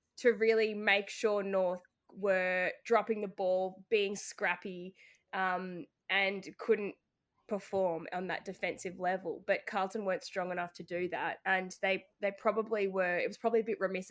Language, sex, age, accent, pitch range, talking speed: English, female, 20-39, Australian, 185-220 Hz, 160 wpm